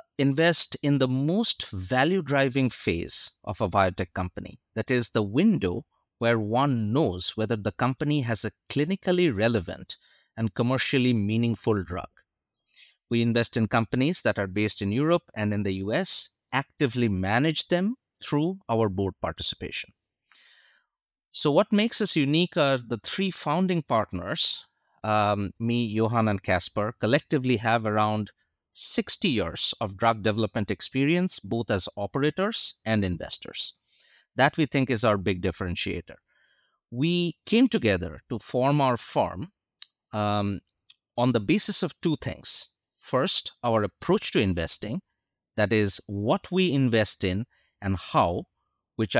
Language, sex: English, male